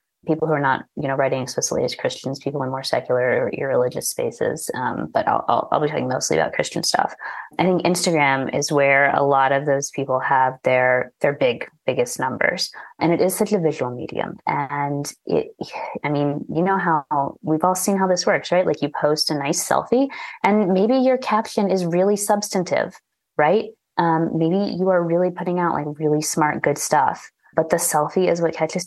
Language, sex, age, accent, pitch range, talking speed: English, female, 20-39, American, 140-195 Hz, 200 wpm